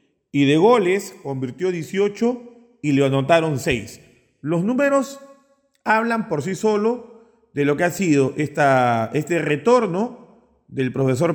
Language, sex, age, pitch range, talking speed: Spanish, male, 40-59, 135-190 Hz, 130 wpm